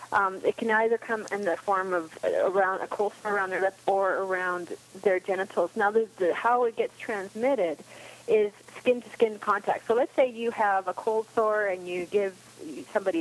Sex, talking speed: female, 195 wpm